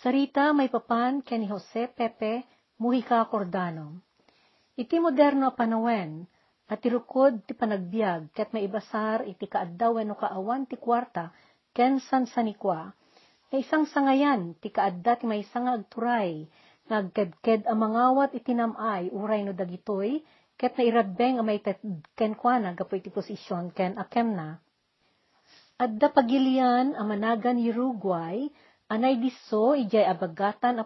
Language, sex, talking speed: Filipino, female, 125 wpm